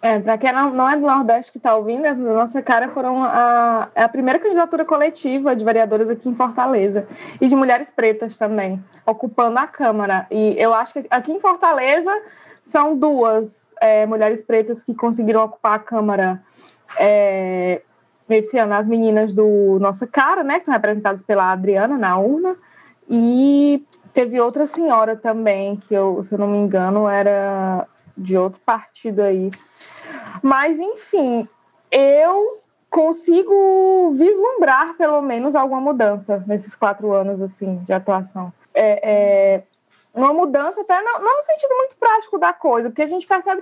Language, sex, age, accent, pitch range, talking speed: Portuguese, female, 20-39, Brazilian, 215-315 Hz, 150 wpm